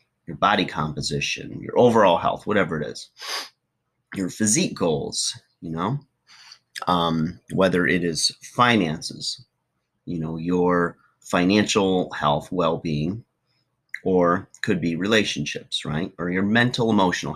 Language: English